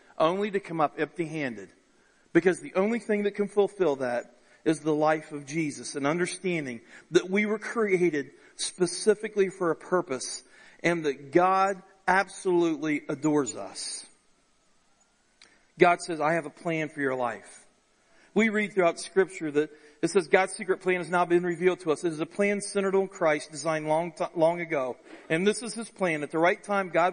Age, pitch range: 40-59, 145-190 Hz